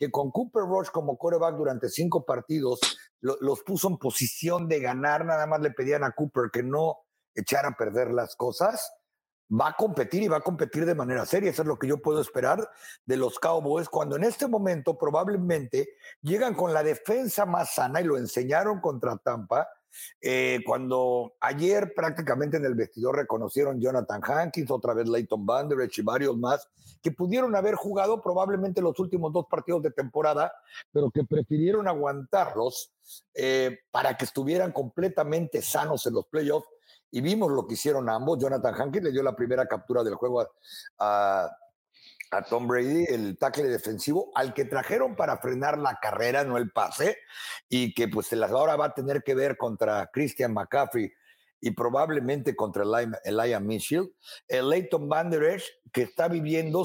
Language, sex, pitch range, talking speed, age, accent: Spanish, male, 130-190 Hz, 170 wpm, 50-69, Mexican